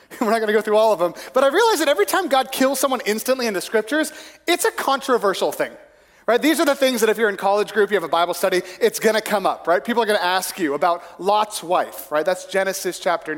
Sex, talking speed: male, 265 wpm